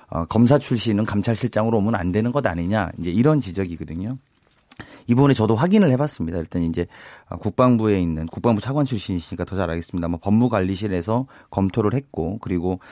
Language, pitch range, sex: Korean, 100-145 Hz, male